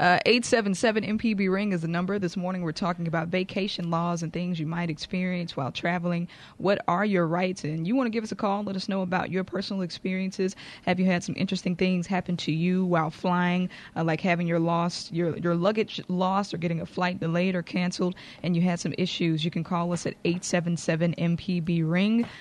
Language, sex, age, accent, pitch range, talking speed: English, female, 20-39, American, 170-195 Hz, 215 wpm